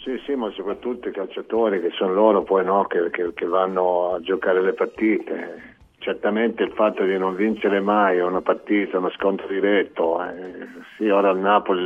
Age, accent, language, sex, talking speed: 50-69, native, Italian, male, 180 wpm